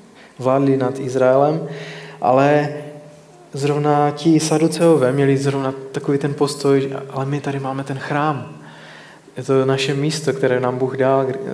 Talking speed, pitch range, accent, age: 140 wpm, 125-145 Hz, native, 20-39